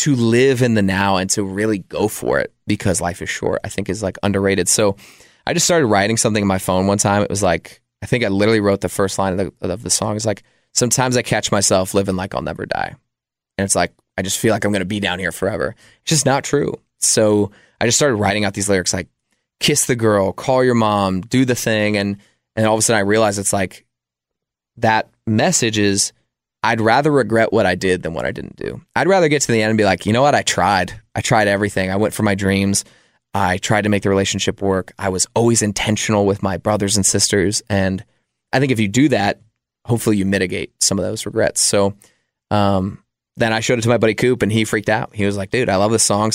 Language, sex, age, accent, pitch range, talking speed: English, male, 20-39, American, 95-115 Hz, 245 wpm